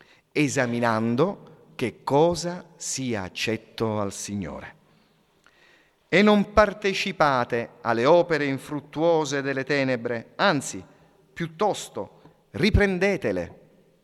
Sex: male